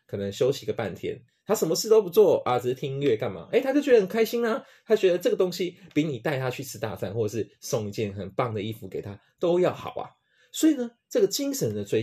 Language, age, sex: Chinese, 20-39, male